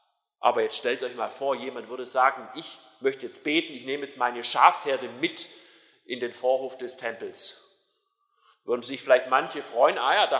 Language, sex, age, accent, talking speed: German, male, 40-59, German, 185 wpm